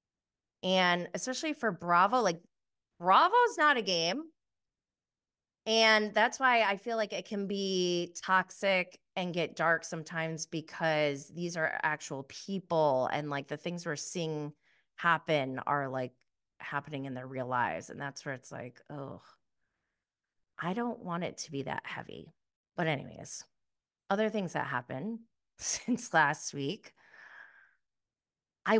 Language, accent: English, American